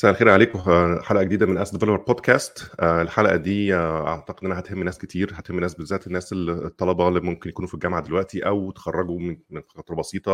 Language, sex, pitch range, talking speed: Arabic, male, 80-95 Hz, 185 wpm